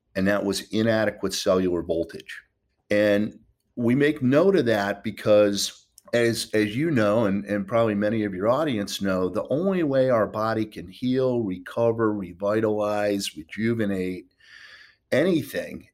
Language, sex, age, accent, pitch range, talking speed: English, male, 50-69, American, 100-115 Hz, 135 wpm